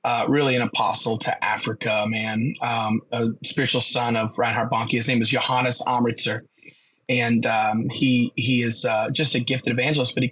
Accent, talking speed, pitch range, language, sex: American, 180 wpm, 120-130 Hz, English, male